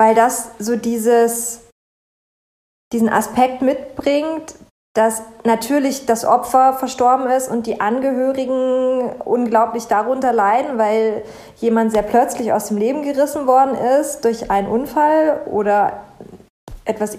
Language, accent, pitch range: German, German, 225-275 Hz